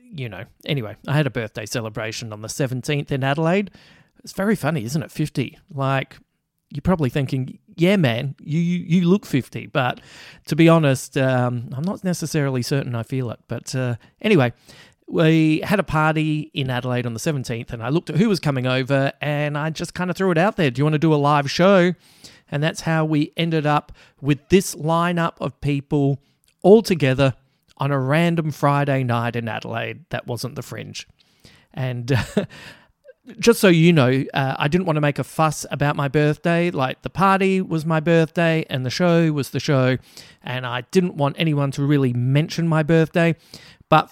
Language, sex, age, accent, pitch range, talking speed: English, male, 40-59, Australian, 130-165 Hz, 195 wpm